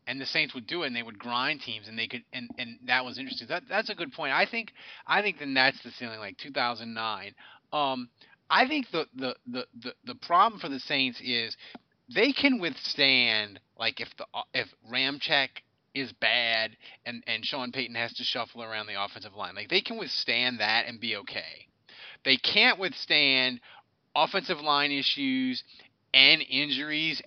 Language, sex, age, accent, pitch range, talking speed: English, male, 30-49, American, 125-155 Hz, 185 wpm